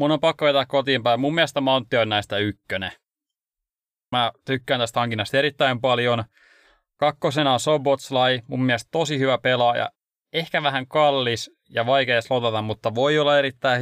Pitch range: 120-145 Hz